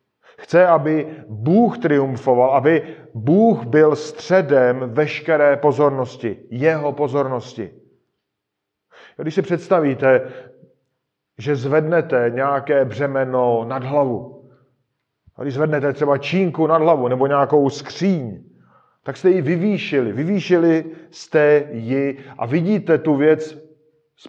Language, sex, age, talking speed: Czech, male, 40-59, 105 wpm